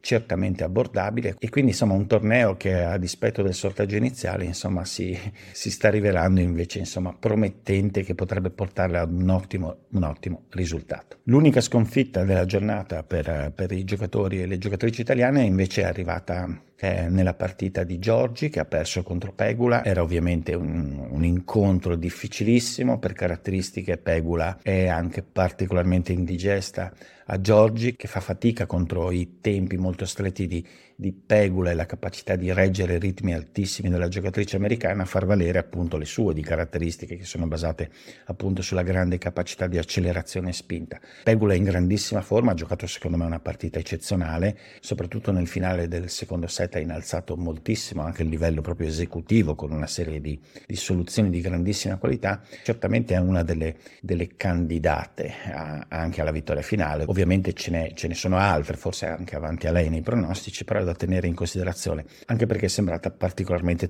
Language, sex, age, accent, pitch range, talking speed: Italian, male, 50-69, native, 85-100 Hz, 170 wpm